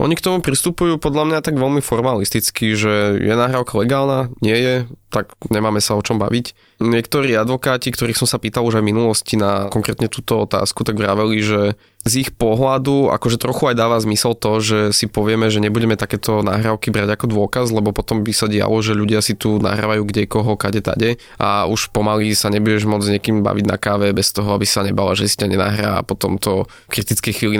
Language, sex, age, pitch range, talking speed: Slovak, male, 20-39, 105-120 Hz, 205 wpm